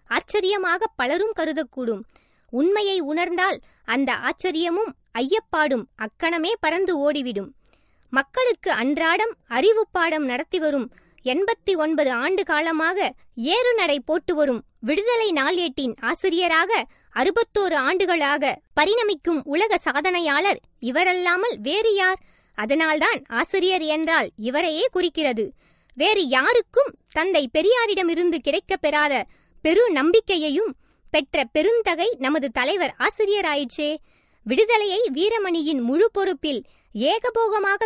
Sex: male